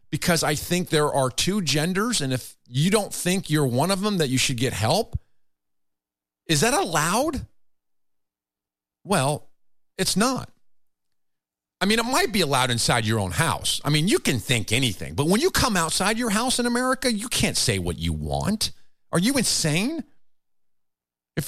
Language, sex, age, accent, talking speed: English, male, 50-69, American, 175 wpm